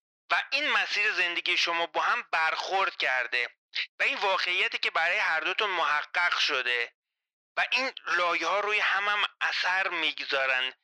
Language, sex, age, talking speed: Persian, male, 30-49, 145 wpm